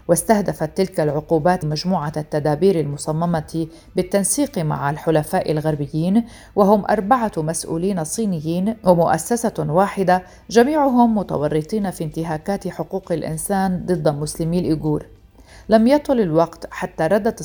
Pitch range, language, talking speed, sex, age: 155-195 Hz, Arabic, 105 wpm, female, 40-59